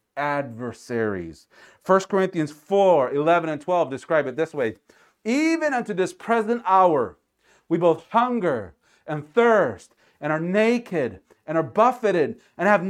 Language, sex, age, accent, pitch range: Japanese, male, 40-59, American, 160-255 Hz